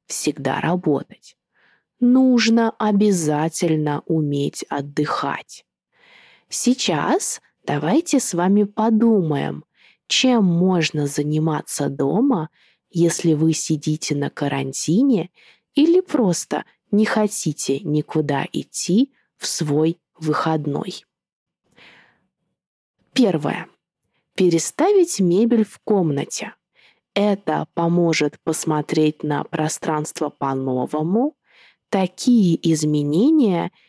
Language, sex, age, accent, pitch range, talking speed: Russian, female, 20-39, native, 155-215 Hz, 75 wpm